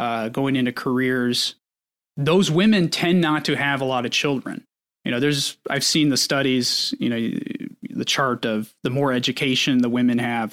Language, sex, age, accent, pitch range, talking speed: English, male, 20-39, American, 120-150 Hz, 180 wpm